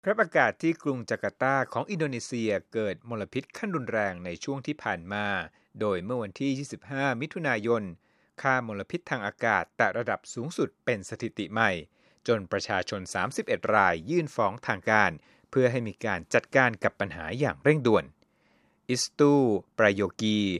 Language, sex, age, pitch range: Thai, male, 60-79, 105-140 Hz